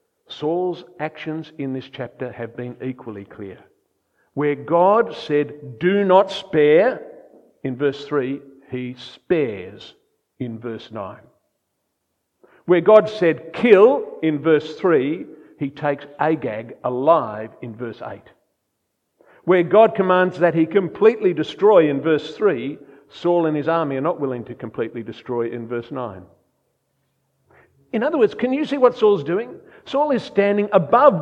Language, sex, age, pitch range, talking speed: English, male, 50-69, 135-200 Hz, 140 wpm